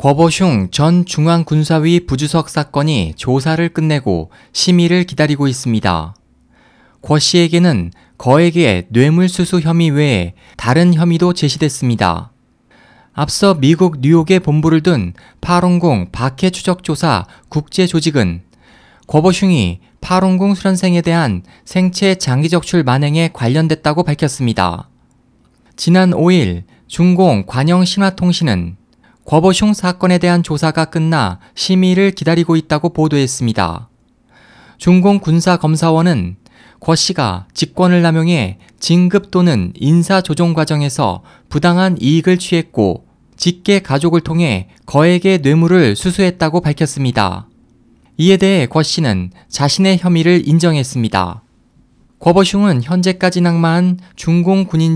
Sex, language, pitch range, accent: male, Korean, 125-175 Hz, native